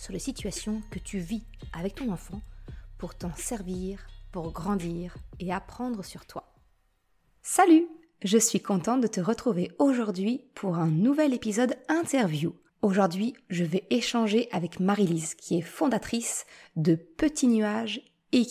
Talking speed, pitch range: 140 wpm, 185-235 Hz